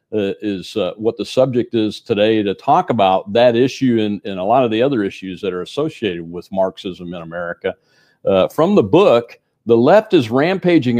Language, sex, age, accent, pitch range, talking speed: English, male, 50-69, American, 105-150 Hz, 195 wpm